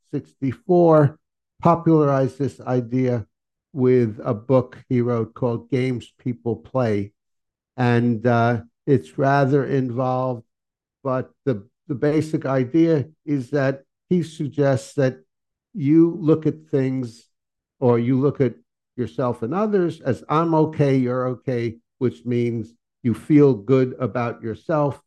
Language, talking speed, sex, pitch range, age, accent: English, 120 wpm, male, 115-140 Hz, 60-79, American